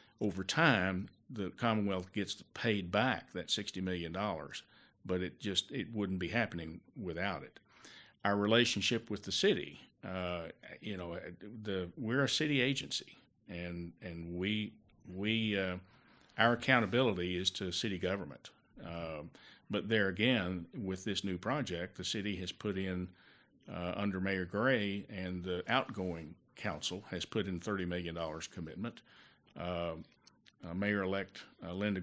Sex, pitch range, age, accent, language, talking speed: male, 90-105 Hz, 50-69, American, English, 140 wpm